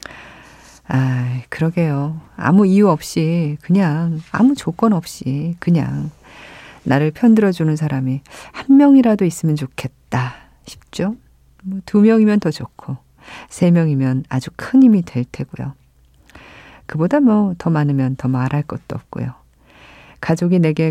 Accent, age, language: native, 40-59, Korean